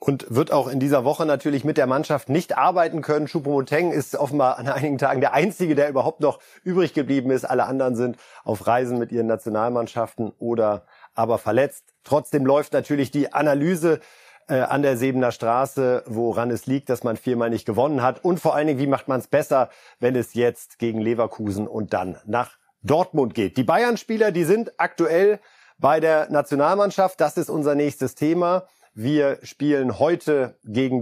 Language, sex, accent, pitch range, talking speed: German, male, German, 125-165 Hz, 180 wpm